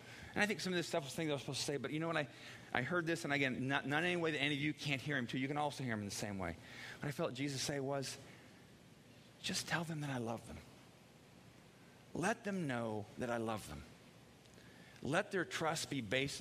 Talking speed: 260 wpm